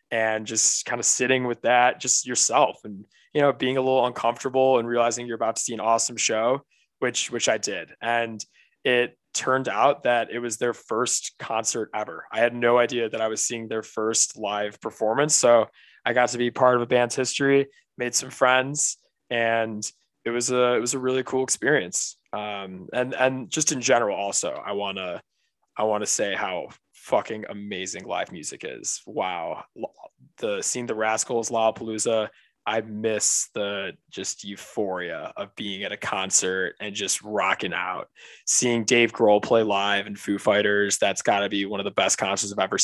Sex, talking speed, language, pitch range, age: male, 190 wpm, English, 110-125 Hz, 20-39